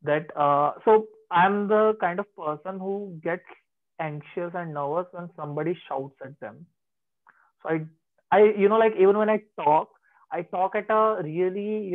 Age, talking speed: 30-49, 170 wpm